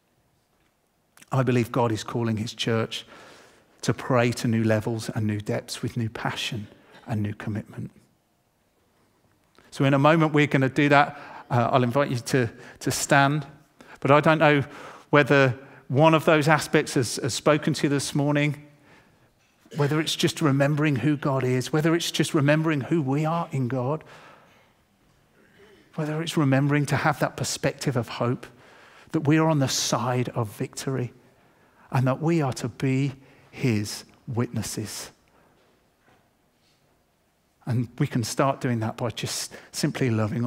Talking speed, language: 155 wpm, English